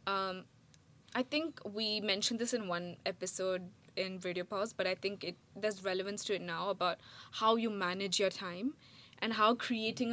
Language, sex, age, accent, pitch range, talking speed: English, female, 20-39, Indian, 190-235 Hz, 180 wpm